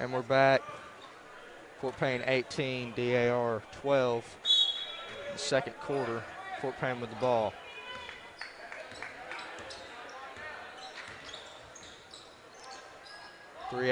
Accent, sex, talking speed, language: American, male, 75 wpm, English